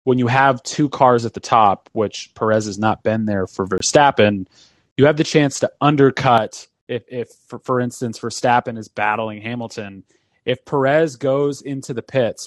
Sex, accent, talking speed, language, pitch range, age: male, American, 180 wpm, English, 110-135 Hz, 30-49